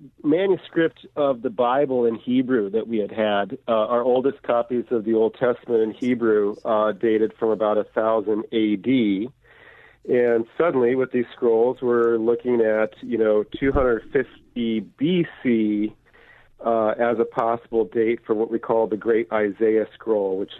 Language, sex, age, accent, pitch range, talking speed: English, male, 40-59, American, 110-125 Hz, 150 wpm